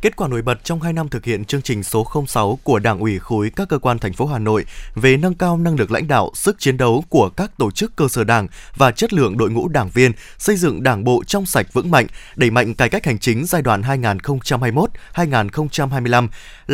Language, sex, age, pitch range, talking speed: Vietnamese, male, 20-39, 125-180 Hz, 235 wpm